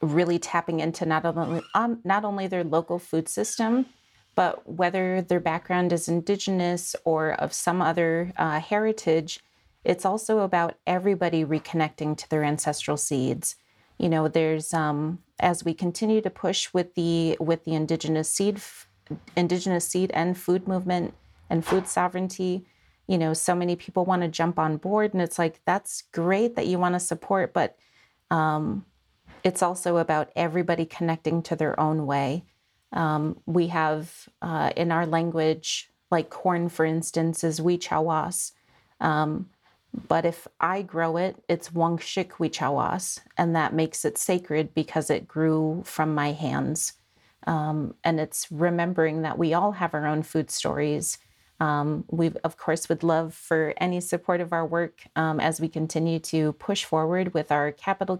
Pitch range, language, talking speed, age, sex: 160-180 Hz, English, 160 wpm, 30-49, female